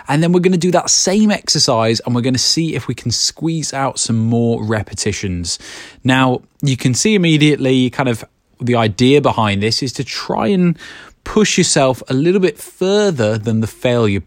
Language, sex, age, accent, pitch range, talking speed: English, male, 20-39, British, 110-155 Hz, 195 wpm